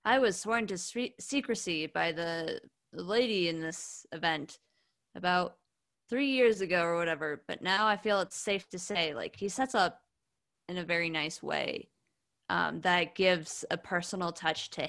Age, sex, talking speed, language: 20-39, female, 165 wpm, English